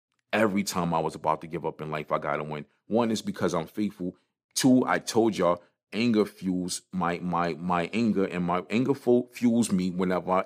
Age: 40-59